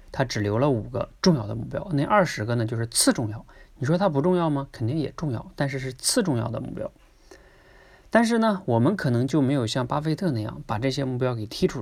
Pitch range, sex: 120-160 Hz, male